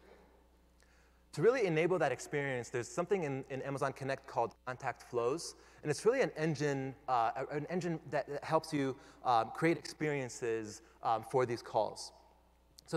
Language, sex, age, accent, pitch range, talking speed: English, male, 20-39, American, 105-150 Hz, 155 wpm